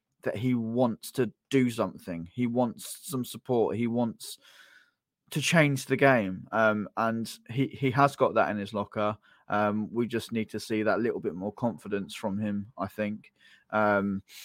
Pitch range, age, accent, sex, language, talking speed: 100-120 Hz, 10-29, British, male, English, 175 wpm